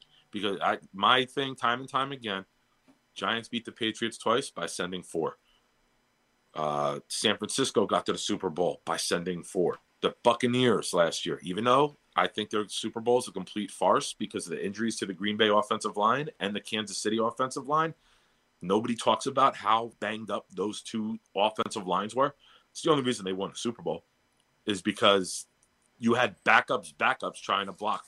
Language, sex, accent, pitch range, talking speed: English, male, American, 105-125 Hz, 185 wpm